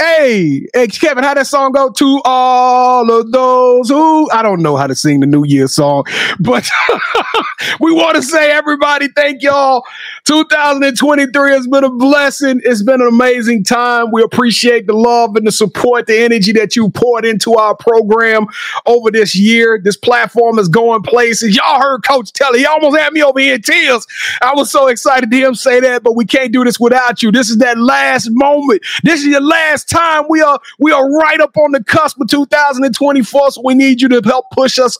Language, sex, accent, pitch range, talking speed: English, male, American, 225-275 Hz, 205 wpm